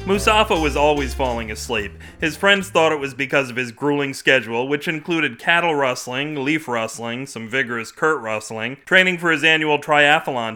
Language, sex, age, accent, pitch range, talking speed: English, male, 40-59, American, 120-155 Hz, 170 wpm